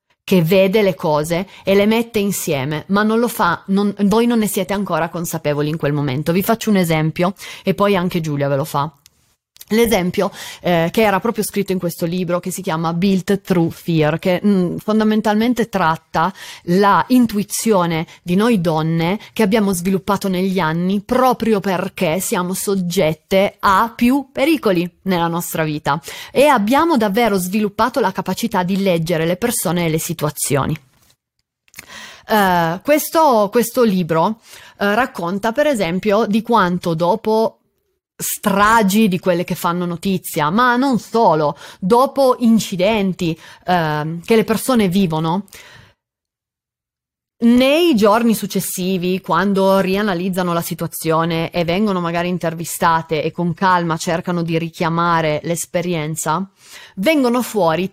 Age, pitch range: 30-49, 170-215 Hz